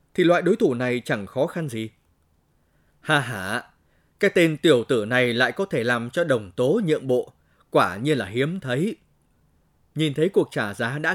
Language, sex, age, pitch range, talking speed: Vietnamese, male, 20-39, 125-170 Hz, 195 wpm